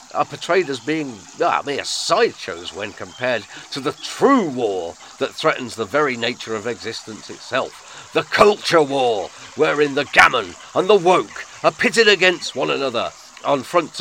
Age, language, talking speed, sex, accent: 40-59, English, 160 wpm, male, British